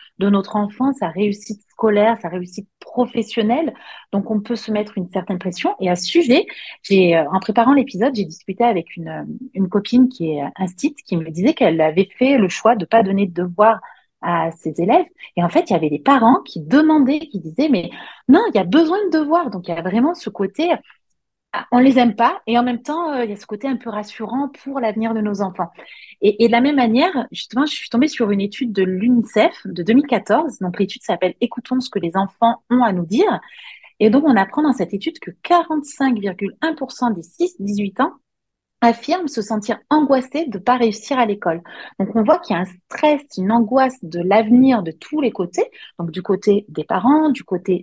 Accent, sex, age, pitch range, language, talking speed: French, female, 30-49, 190-265 Hz, French, 215 wpm